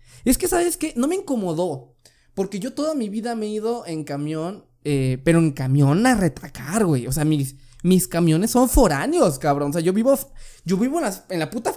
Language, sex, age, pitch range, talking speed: Spanish, male, 20-39, 130-185 Hz, 220 wpm